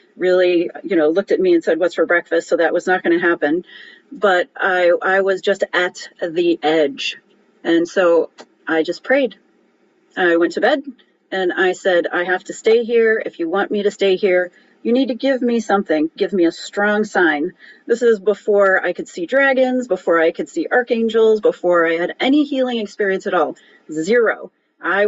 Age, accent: 40-59, American